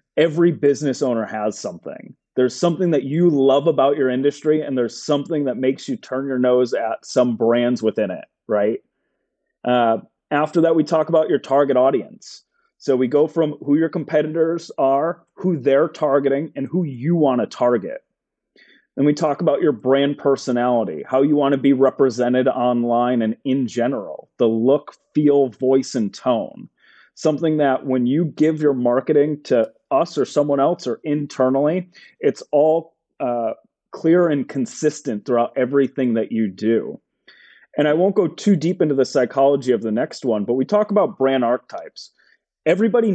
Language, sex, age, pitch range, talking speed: English, male, 30-49, 130-160 Hz, 170 wpm